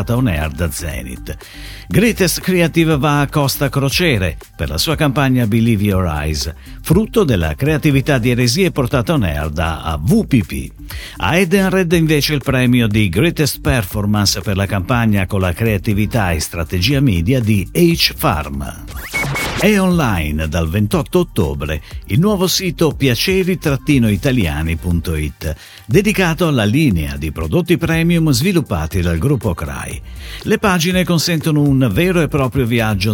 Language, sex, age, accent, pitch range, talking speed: Italian, male, 50-69, native, 95-155 Hz, 130 wpm